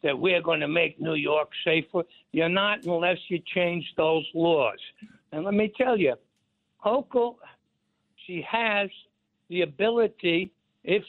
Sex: male